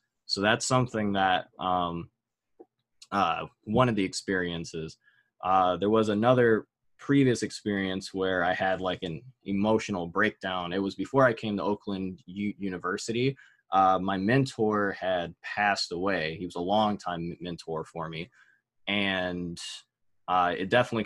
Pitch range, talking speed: 95-110 Hz, 140 wpm